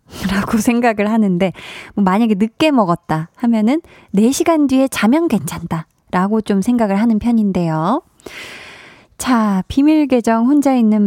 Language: Korean